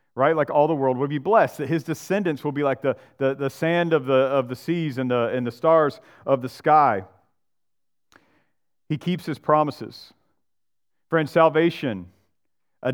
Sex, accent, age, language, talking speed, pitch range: male, American, 40-59, English, 175 wpm, 115-155 Hz